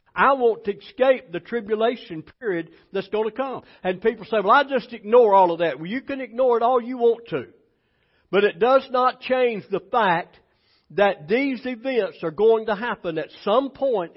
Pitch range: 195-250 Hz